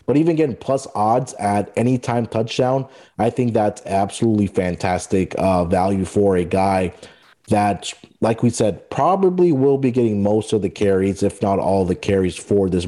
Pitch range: 100-125 Hz